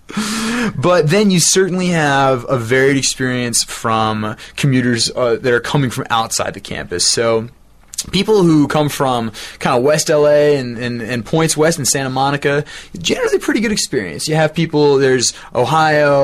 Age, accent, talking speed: 20-39, American, 165 wpm